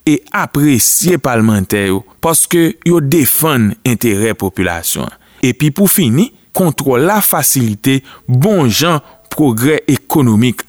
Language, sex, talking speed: French, male, 110 wpm